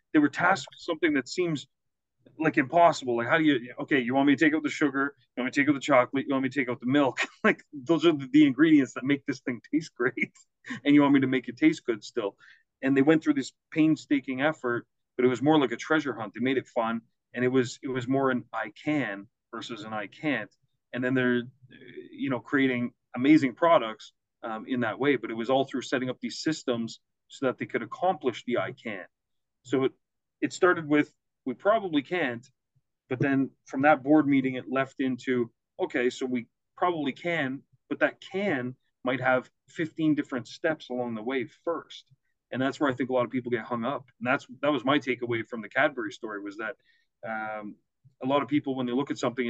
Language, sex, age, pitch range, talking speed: English, male, 30-49, 125-150 Hz, 230 wpm